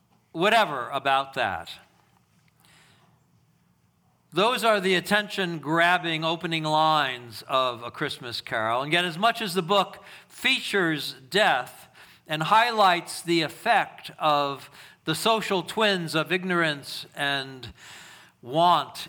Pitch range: 145-185 Hz